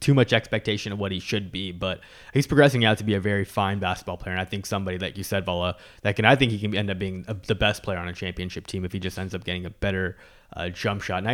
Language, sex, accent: English, male, American